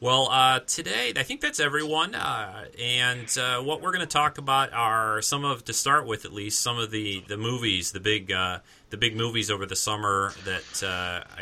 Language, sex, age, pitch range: English, male, 30-49, 95-120 Hz